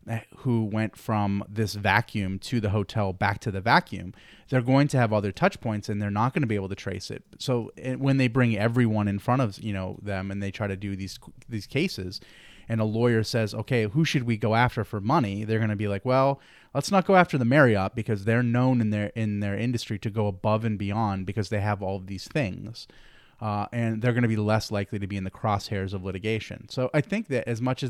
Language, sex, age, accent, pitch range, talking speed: English, male, 30-49, American, 100-120 Hz, 245 wpm